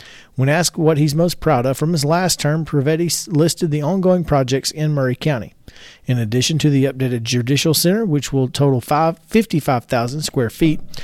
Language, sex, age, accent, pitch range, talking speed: English, male, 40-59, American, 130-170 Hz, 175 wpm